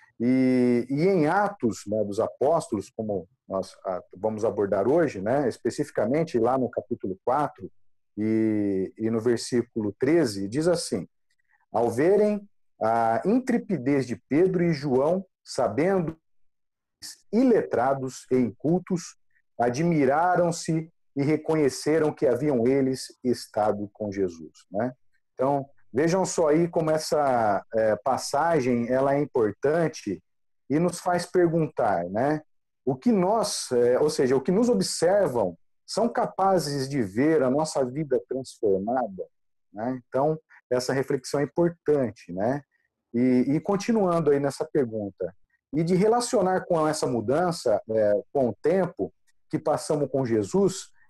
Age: 50-69